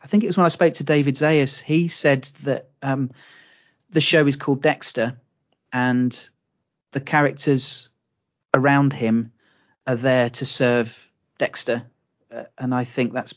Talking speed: 155 wpm